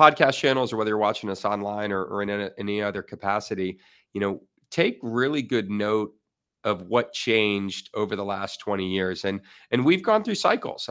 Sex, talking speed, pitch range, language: male, 200 wpm, 100-115 Hz, English